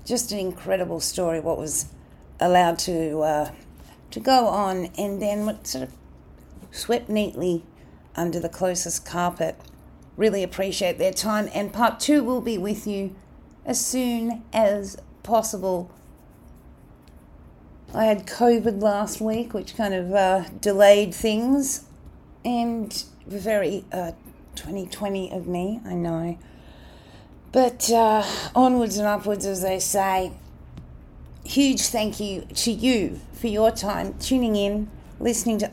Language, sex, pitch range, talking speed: English, female, 170-215 Hz, 130 wpm